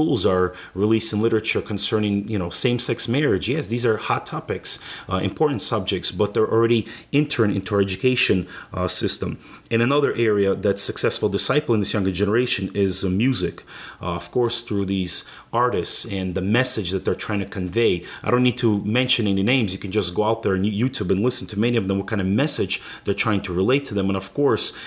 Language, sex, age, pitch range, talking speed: English, male, 30-49, 95-115 Hz, 205 wpm